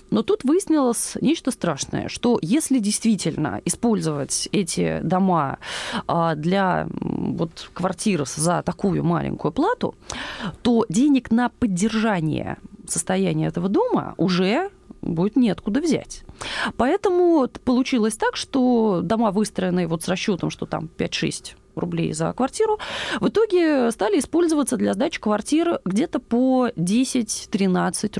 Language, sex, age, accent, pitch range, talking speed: Russian, female, 20-39, native, 190-270 Hz, 115 wpm